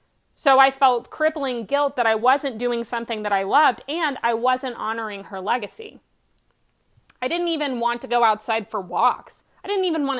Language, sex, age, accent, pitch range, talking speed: English, female, 30-49, American, 215-270 Hz, 190 wpm